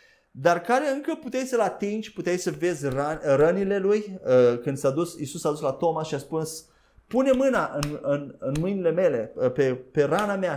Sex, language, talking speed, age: male, Romanian, 180 wpm, 30-49